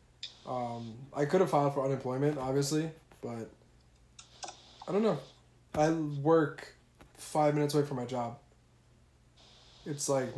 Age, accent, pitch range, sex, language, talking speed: 20-39, American, 125-145 Hz, male, English, 125 wpm